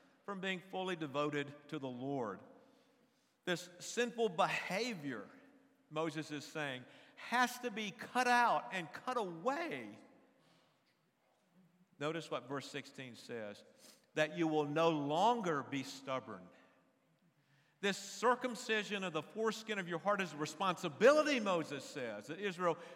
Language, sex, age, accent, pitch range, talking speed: English, male, 50-69, American, 170-250 Hz, 125 wpm